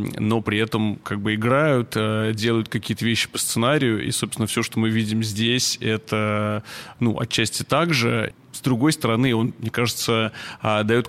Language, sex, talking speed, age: Russian, male, 155 wpm, 30-49